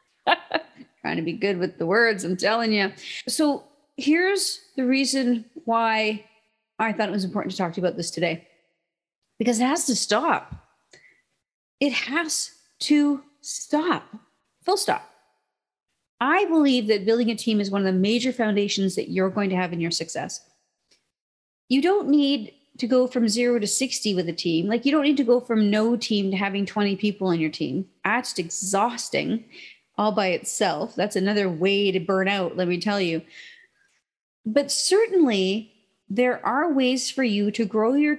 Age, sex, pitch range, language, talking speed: 40-59, female, 200-280 Hz, English, 175 wpm